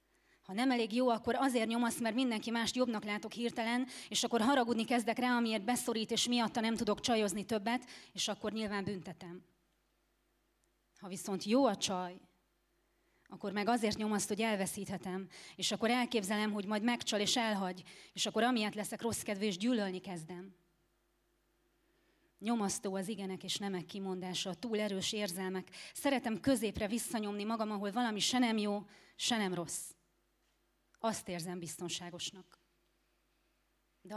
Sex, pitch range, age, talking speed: female, 190-235 Hz, 30-49, 145 wpm